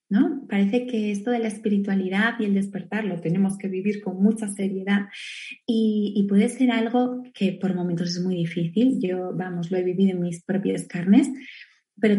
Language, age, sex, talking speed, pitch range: Spanish, 20-39, female, 185 wpm, 195-215 Hz